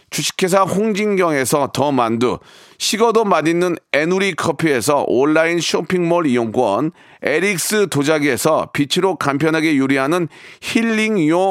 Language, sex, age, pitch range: Korean, male, 40-59, 160-205 Hz